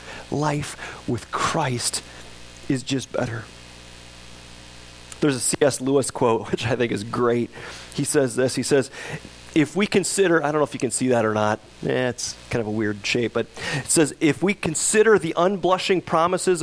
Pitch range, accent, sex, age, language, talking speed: 115-160 Hz, American, male, 40-59, English, 180 wpm